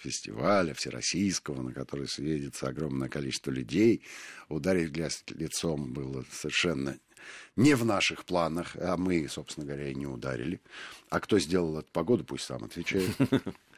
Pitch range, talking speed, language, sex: 80-110 Hz, 135 wpm, Russian, male